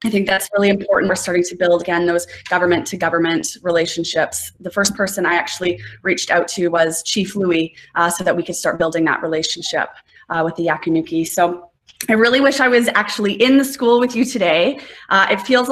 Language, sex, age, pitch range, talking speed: English, female, 20-39, 185-230 Hz, 210 wpm